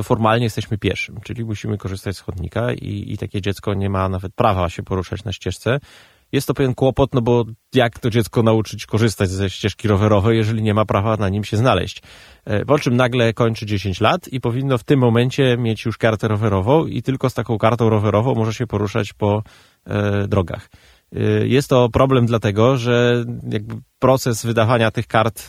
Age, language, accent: 20-39, Polish, native